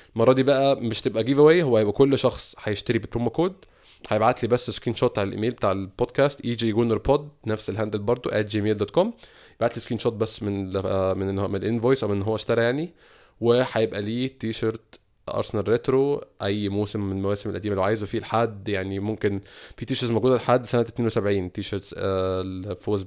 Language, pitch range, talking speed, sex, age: Arabic, 100-125 Hz, 180 wpm, male, 20-39